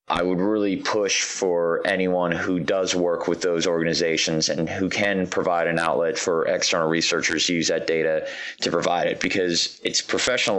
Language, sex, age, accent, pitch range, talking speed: English, male, 30-49, American, 85-100 Hz, 175 wpm